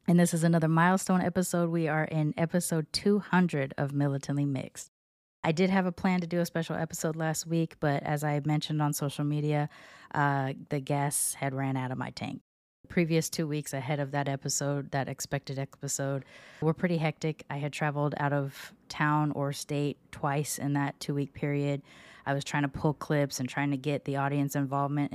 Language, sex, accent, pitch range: English, female, American, 140-160 Hz